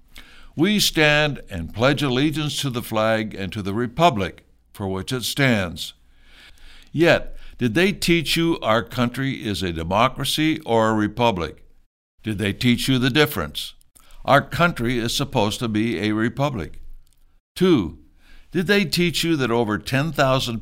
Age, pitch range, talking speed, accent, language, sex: 60-79, 95-135 Hz, 150 wpm, American, English, male